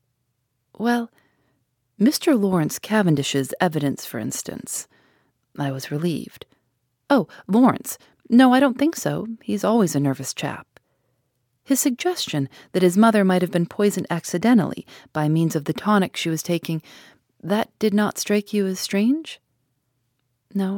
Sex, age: female, 40-59